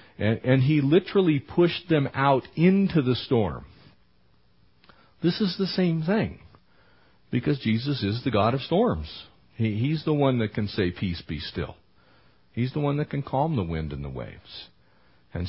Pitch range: 90-140 Hz